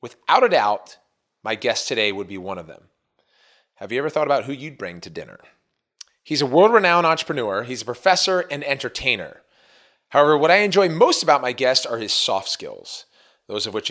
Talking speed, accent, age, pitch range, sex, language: 200 wpm, American, 30-49, 105-150 Hz, male, English